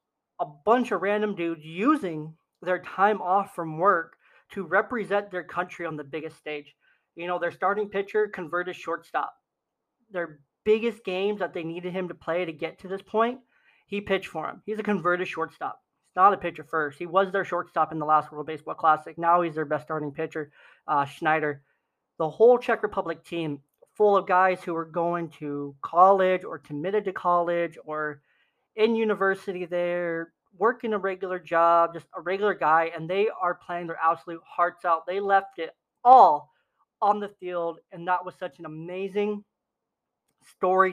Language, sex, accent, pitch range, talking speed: English, male, American, 165-195 Hz, 180 wpm